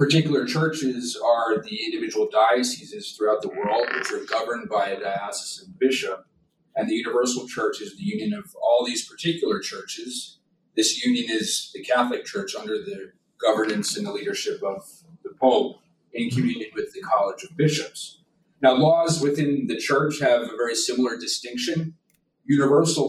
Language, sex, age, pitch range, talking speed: English, male, 40-59, 120-195 Hz, 160 wpm